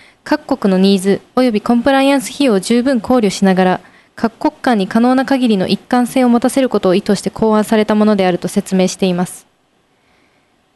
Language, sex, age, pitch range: Japanese, female, 20-39, 195-260 Hz